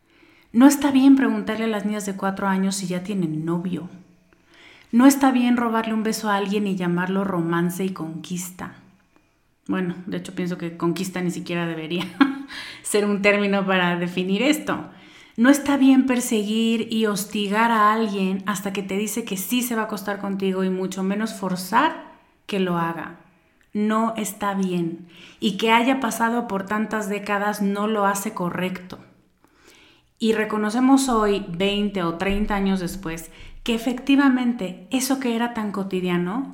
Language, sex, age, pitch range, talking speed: Spanish, female, 30-49, 185-235 Hz, 160 wpm